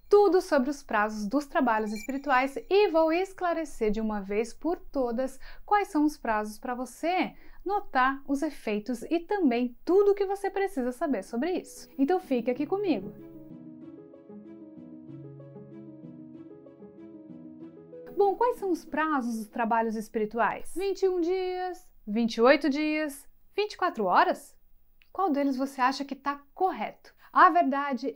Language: Portuguese